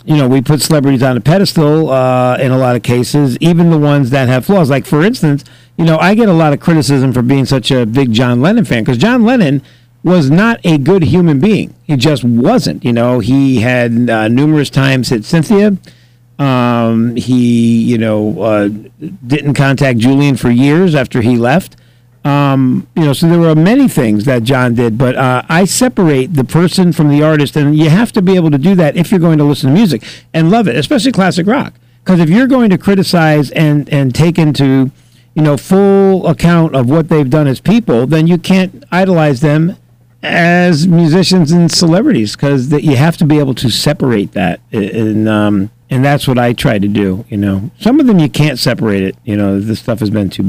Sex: male